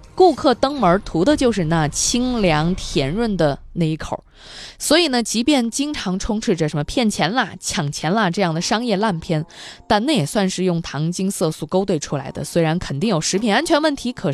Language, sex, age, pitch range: Chinese, female, 20-39, 165-245 Hz